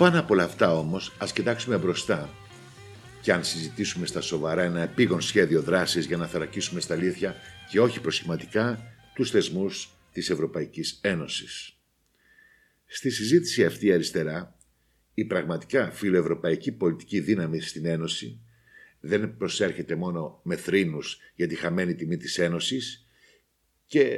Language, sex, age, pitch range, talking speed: Greek, male, 60-79, 85-125 Hz, 130 wpm